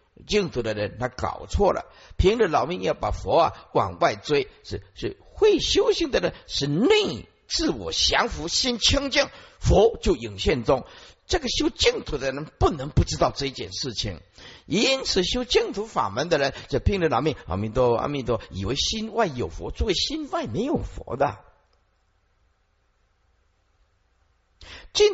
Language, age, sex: Chinese, 50-69, male